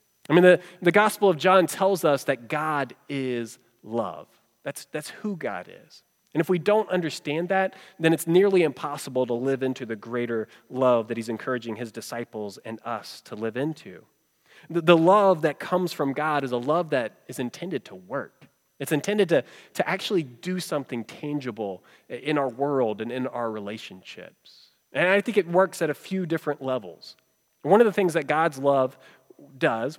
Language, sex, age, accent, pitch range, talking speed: English, male, 30-49, American, 130-180 Hz, 185 wpm